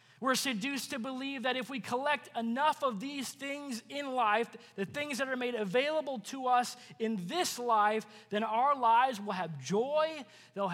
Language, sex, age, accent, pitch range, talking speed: English, male, 20-39, American, 205-260 Hz, 180 wpm